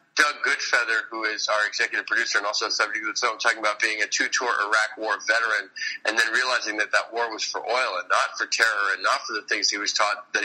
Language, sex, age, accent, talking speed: English, male, 40-59, American, 225 wpm